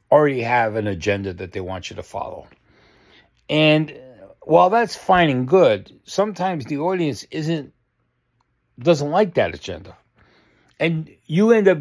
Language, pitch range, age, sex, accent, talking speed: English, 110-160 Hz, 60-79, male, American, 140 wpm